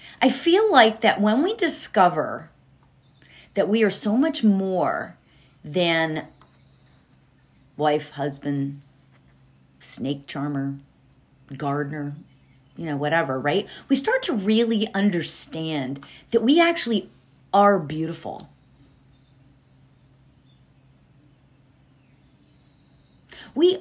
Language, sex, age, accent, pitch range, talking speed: English, female, 40-59, American, 140-225 Hz, 85 wpm